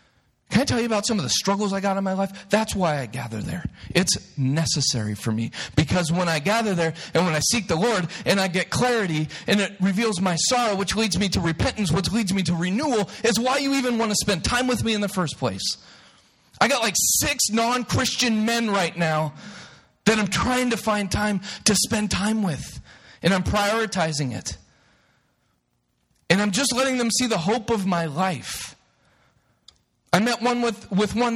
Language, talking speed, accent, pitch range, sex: English, 205 wpm, American, 150-230 Hz, male